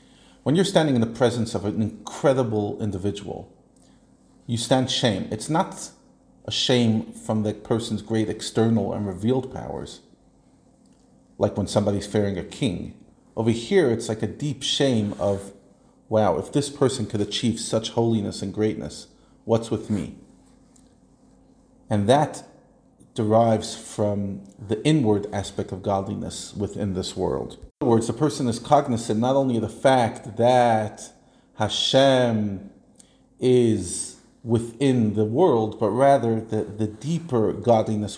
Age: 40-59